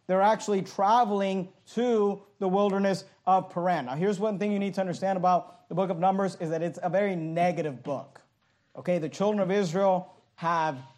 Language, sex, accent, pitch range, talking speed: English, male, American, 155-195 Hz, 185 wpm